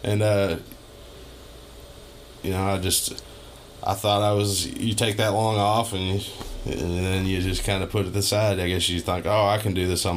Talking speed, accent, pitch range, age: 210 wpm, American, 85-100 Hz, 20-39